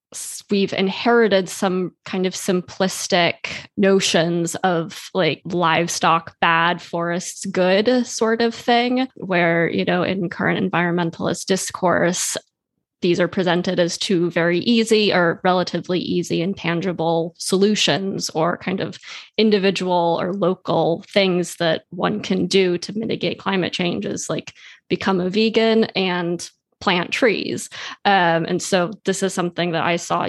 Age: 20-39